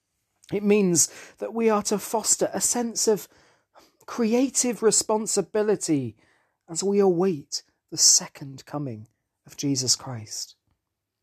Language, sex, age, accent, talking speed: English, male, 40-59, British, 110 wpm